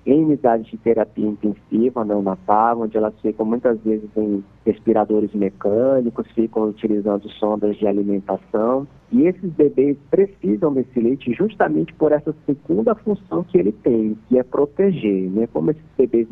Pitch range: 110-135 Hz